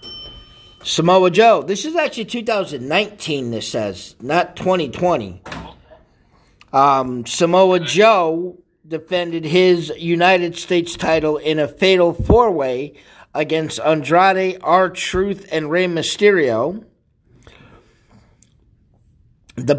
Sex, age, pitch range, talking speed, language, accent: male, 50-69, 155-180 Hz, 90 wpm, English, American